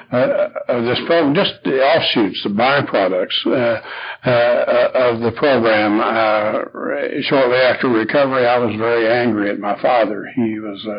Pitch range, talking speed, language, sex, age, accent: 110-125 Hz, 145 wpm, English, male, 60-79, American